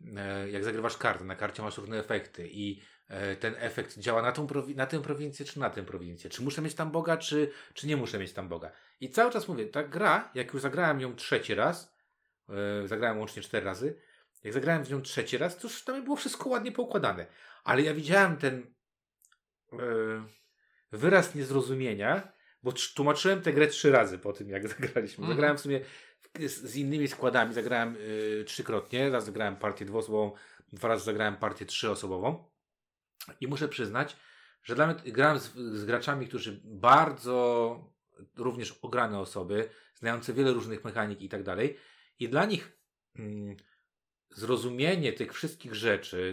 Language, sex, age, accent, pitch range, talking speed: Polish, male, 40-59, native, 105-145 Hz, 160 wpm